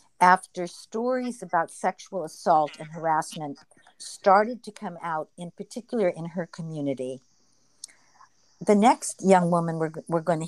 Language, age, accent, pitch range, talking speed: English, 50-69, American, 165-210 Hz, 135 wpm